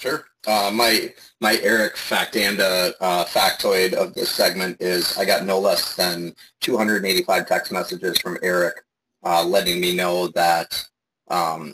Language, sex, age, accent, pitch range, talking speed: English, male, 30-49, American, 95-110 Hz, 150 wpm